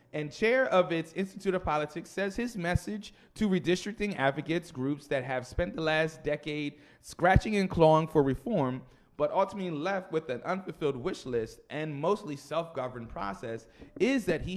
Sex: male